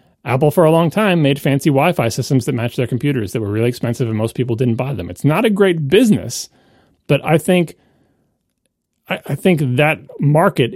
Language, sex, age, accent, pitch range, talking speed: English, male, 30-49, American, 115-150 Hz, 200 wpm